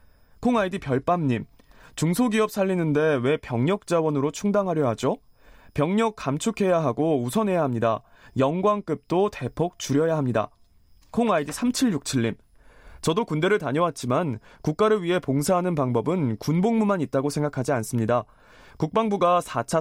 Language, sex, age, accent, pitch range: Korean, male, 20-39, native, 130-195 Hz